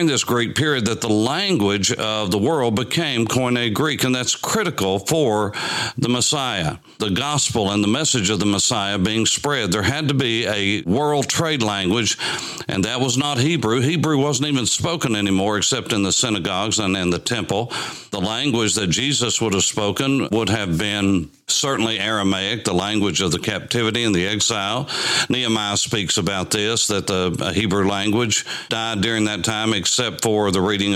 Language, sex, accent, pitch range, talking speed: English, male, American, 100-120 Hz, 175 wpm